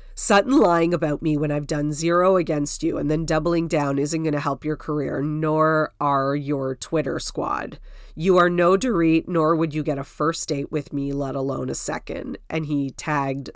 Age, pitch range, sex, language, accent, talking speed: 30-49, 140-170 Hz, female, English, American, 200 wpm